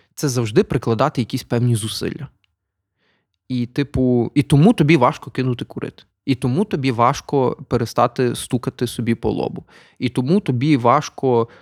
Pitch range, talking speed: 120-150 Hz, 140 wpm